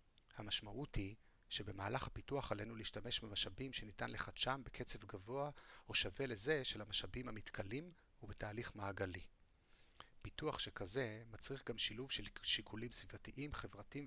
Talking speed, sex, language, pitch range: 120 wpm, male, Hebrew, 100-125 Hz